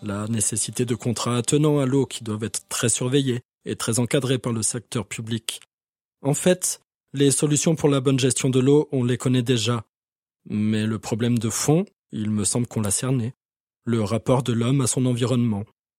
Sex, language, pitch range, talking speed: male, French, 110-130 Hz, 190 wpm